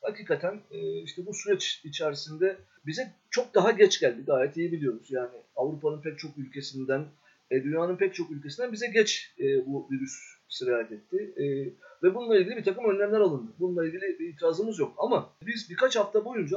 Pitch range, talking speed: 180-270 Hz, 165 wpm